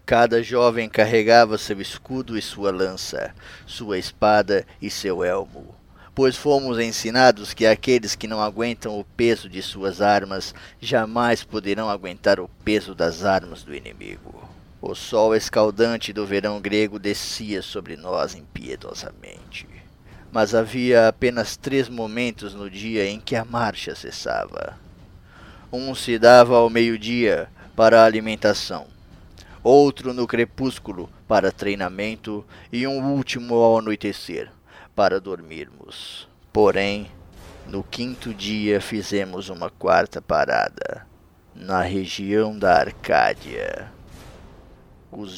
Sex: male